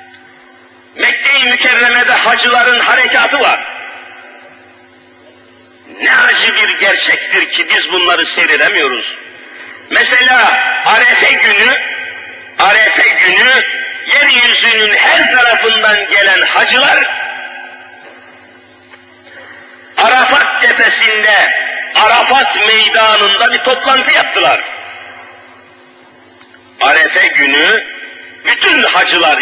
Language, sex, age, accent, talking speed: Turkish, male, 50-69, native, 65 wpm